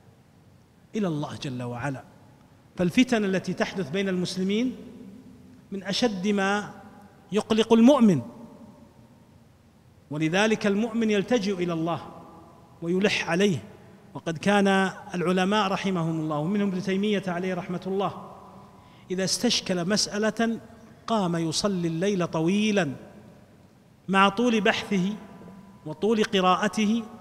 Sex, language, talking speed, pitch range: male, Arabic, 95 wpm, 165-205 Hz